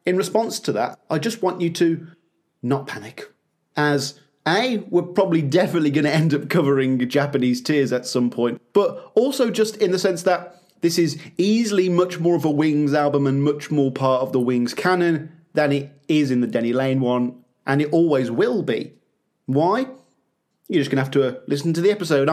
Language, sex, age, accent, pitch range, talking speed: English, male, 30-49, British, 135-170 Hz, 200 wpm